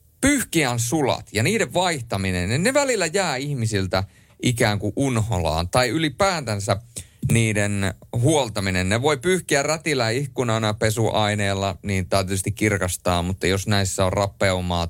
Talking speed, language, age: 120 wpm, Finnish, 30-49